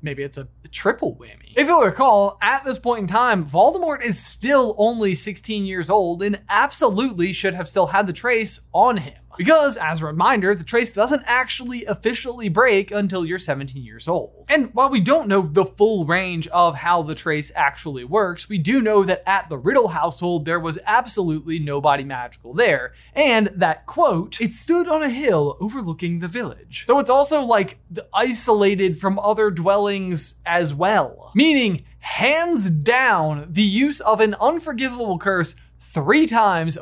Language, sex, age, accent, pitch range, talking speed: English, male, 20-39, American, 170-230 Hz, 170 wpm